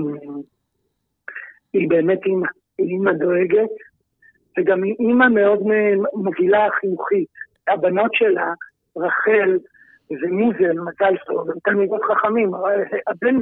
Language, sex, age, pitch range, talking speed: Hebrew, male, 50-69, 195-250 Hz, 95 wpm